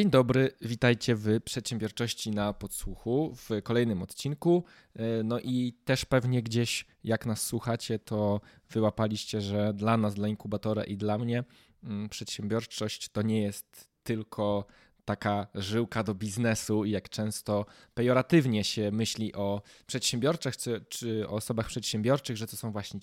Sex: male